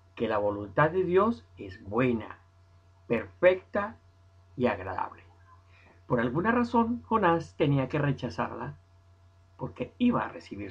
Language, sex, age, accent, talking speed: Spanish, male, 50-69, Mexican, 120 wpm